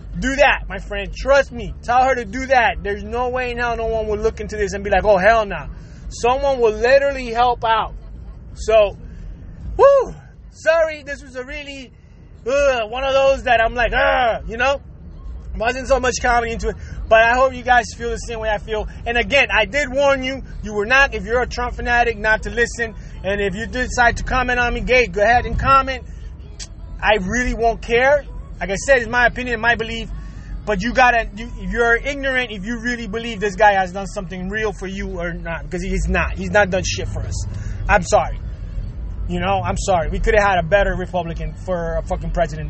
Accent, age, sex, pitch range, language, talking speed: American, 20-39, male, 200-255 Hz, English, 215 wpm